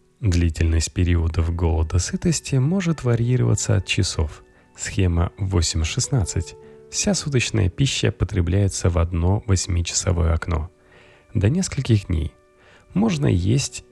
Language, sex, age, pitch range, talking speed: Russian, male, 30-49, 85-120 Hz, 100 wpm